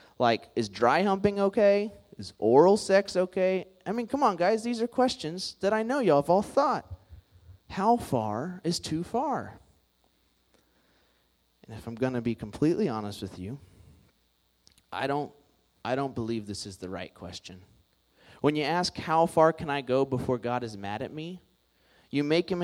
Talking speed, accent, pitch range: 175 wpm, American, 100-155 Hz